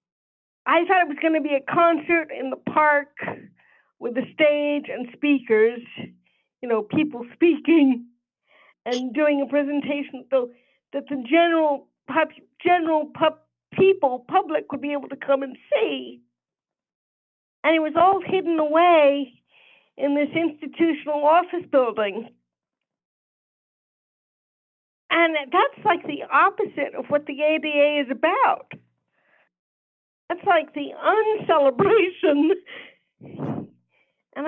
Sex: female